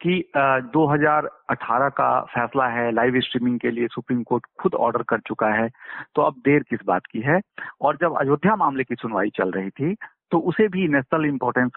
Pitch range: 125-175 Hz